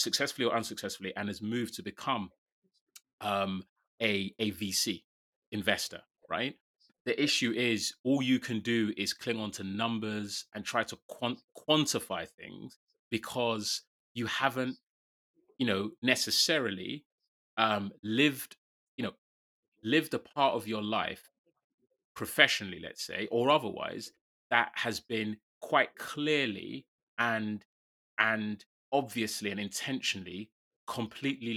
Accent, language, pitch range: British, English, 100-115 Hz